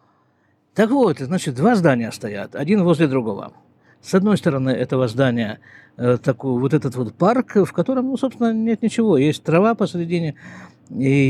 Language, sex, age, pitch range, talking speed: Russian, male, 50-69, 125-195 Hz, 160 wpm